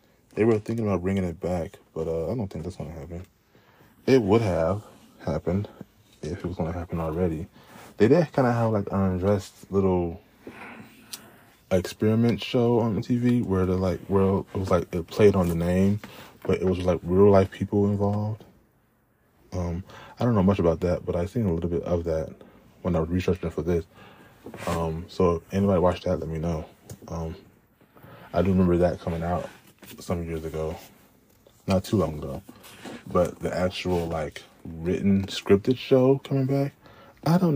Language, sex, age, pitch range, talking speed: English, male, 20-39, 90-115 Hz, 180 wpm